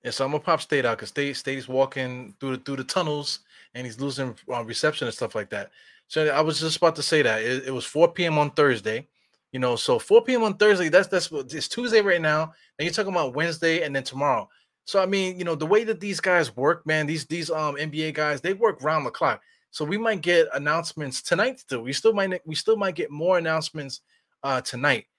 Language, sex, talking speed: English, male, 240 wpm